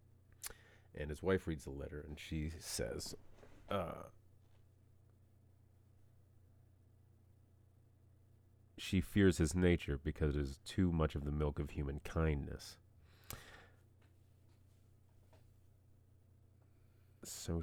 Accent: American